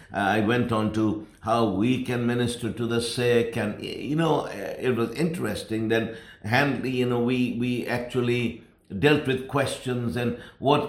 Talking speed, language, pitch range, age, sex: 160 wpm, English, 110-140 Hz, 60-79, male